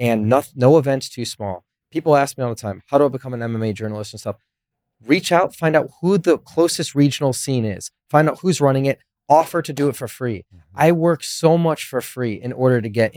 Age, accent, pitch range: 30-49, American, 110-140 Hz